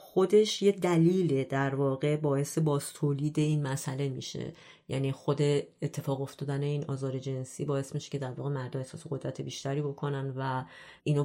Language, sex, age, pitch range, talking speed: Persian, female, 30-49, 135-150 Hz, 150 wpm